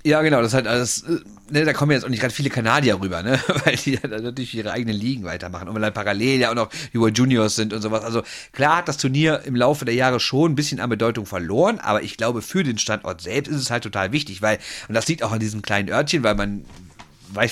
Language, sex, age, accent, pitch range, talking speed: German, male, 40-59, German, 105-135 Hz, 265 wpm